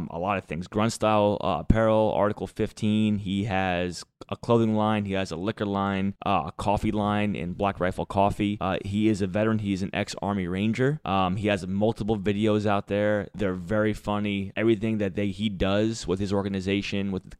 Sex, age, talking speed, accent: male, 20-39, 205 wpm, American